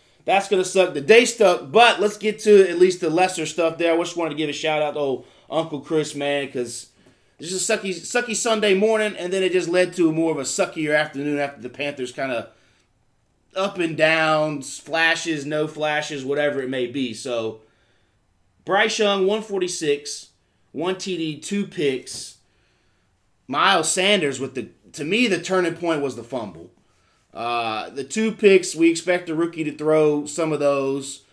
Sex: male